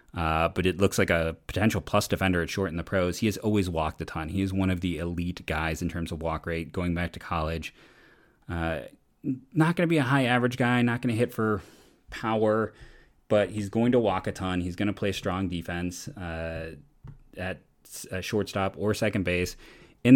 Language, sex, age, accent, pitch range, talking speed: English, male, 30-49, American, 85-105 Hz, 215 wpm